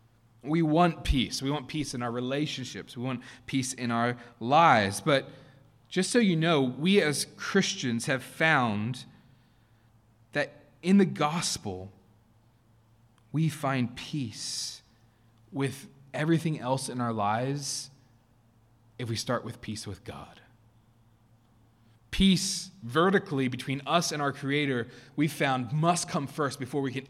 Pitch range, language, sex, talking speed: 115-145 Hz, English, male, 135 wpm